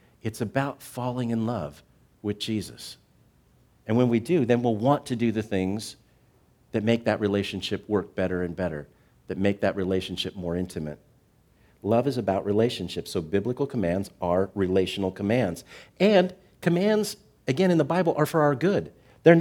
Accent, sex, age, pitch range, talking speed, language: American, male, 50-69, 110-160 Hz, 165 wpm, English